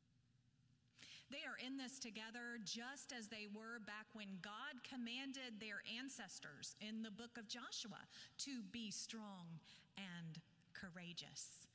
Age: 40-59